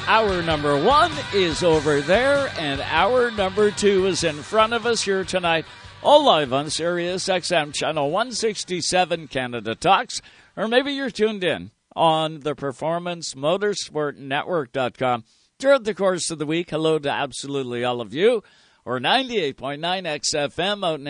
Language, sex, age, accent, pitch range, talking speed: English, male, 60-79, American, 140-195 Hz, 150 wpm